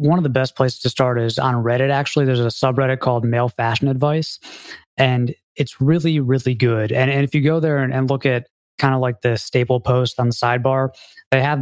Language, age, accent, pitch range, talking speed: English, 20-39, American, 120-135 Hz, 225 wpm